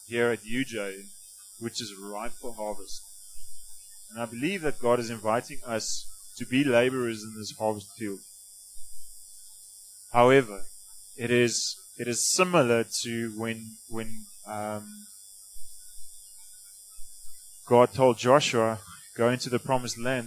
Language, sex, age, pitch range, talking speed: English, male, 20-39, 110-125 Hz, 120 wpm